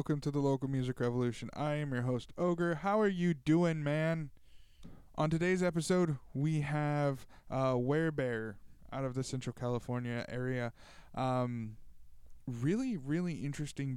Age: 20-39